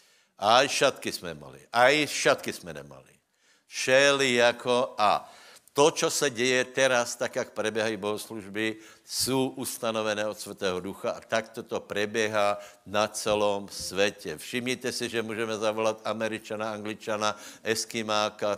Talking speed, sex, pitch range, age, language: 130 wpm, male, 105-125 Hz, 60-79, Slovak